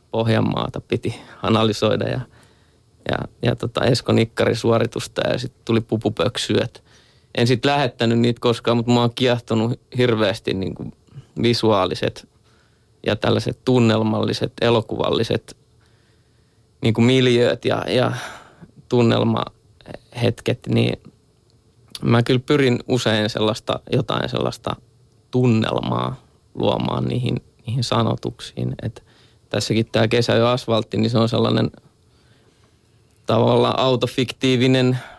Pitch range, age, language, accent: 110-120 Hz, 20-39, Finnish, native